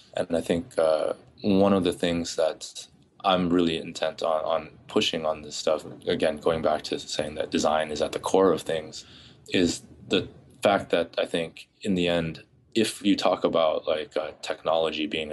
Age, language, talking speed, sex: 20-39, English, 190 wpm, male